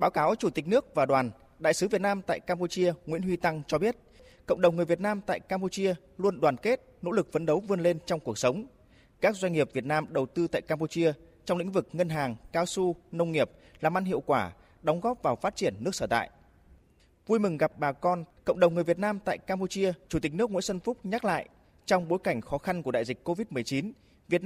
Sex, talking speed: male, 240 wpm